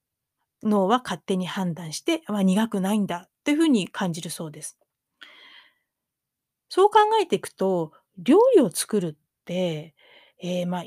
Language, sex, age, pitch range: Japanese, female, 30-49, 180-255 Hz